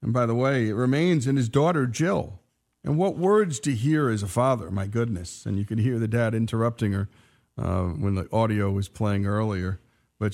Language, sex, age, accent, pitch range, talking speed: English, male, 50-69, American, 105-140 Hz, 210 wpm